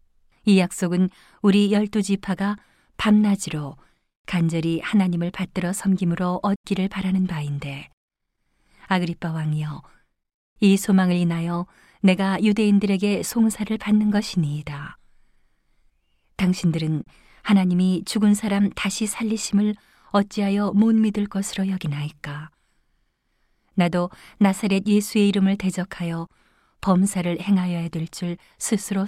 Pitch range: 165-205 Hz